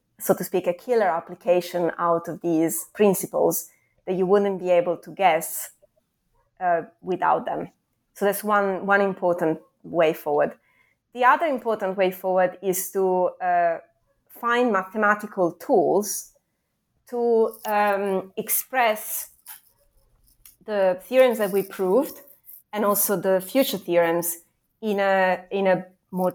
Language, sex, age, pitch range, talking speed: English, female, 20-39, 170-205 Hz, 130 wpm